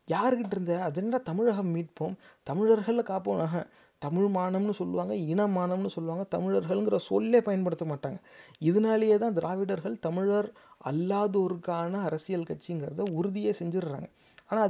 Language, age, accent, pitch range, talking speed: Tamil, 30-49, native, 160-205 Hz, 110 wpm